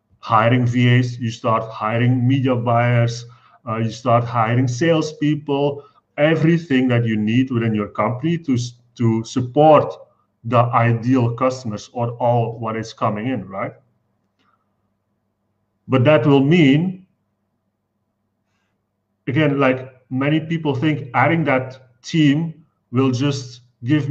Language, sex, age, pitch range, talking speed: English, male, 40-59, 110-140 Hz, 115 wpm